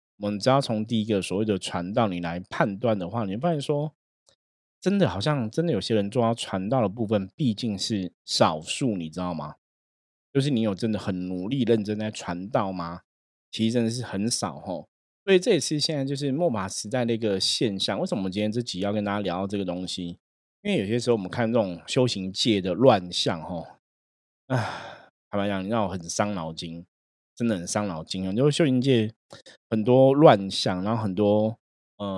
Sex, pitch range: male, 95-115 Hz